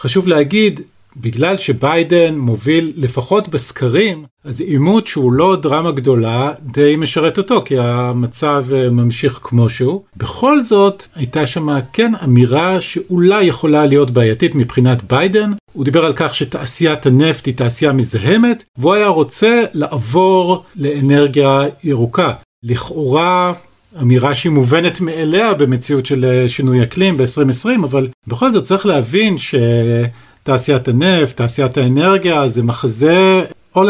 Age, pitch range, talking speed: 50-69, 125-175 Hz, 125 wpm